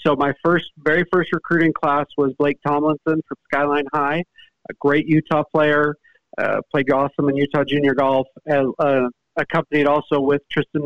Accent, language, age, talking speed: American, English, 50-69, 165 wpm